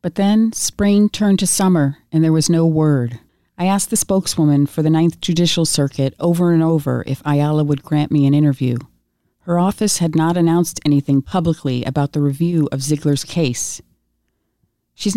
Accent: American